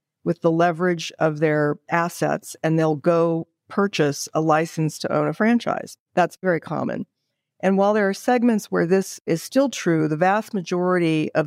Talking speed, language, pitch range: 175 wpm, English, 150-180 Hz